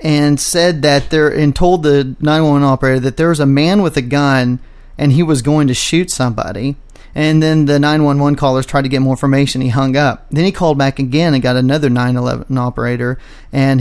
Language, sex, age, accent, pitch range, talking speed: English, male, 30-49, American, 130-155 Hz, 210 wpm